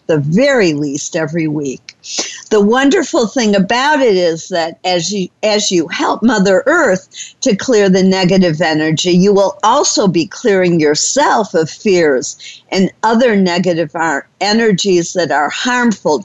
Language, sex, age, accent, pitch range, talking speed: English, female, 50-69, American, 170-225 Hz, 145 wpm